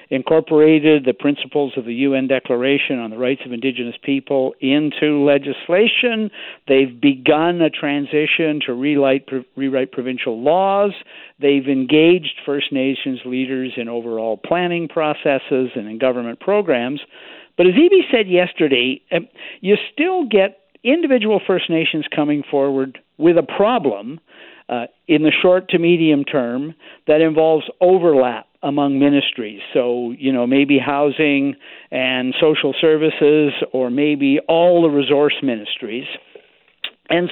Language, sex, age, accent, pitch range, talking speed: English, male, 50-69, American, 135-185 Hz, 125 wpm